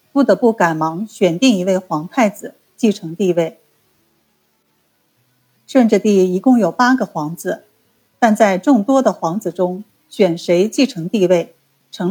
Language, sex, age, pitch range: Chinese, female, 50-69, 175-240 Hz